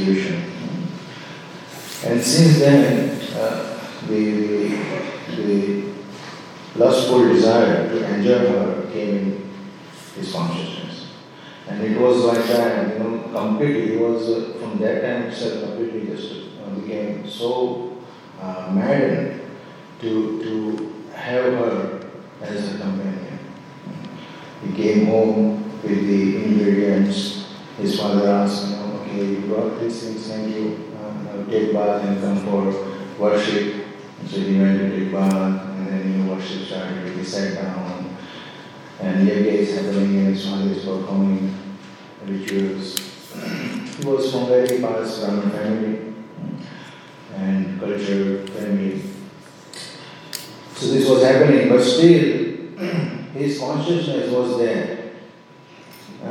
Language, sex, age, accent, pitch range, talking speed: English, male, 40-59, Indian, 100-120 Hz, 115 wpm